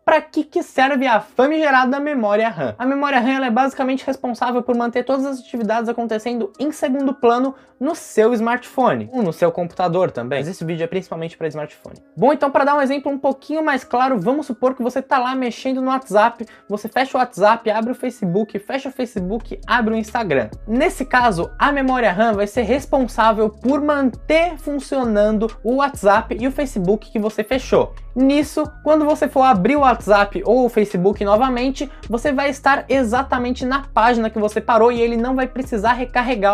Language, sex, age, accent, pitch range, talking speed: Portuguese, male, 20-39, Brazilian, 220-270 Hz, 190 wpm